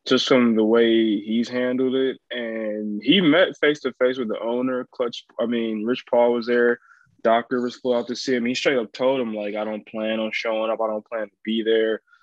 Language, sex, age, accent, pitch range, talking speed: English, male, 20-39, American, 115-135 Hz, 225 wpm